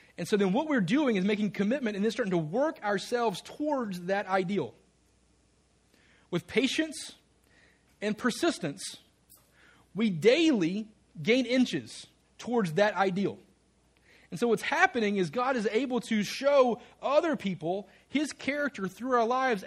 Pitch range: 195-255 Hz